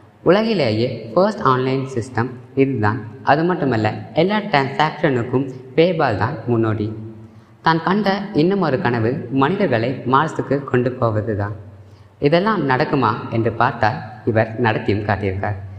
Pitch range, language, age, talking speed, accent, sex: 110-145 Hz, Tamil, 20-39, 110 wpm, native, female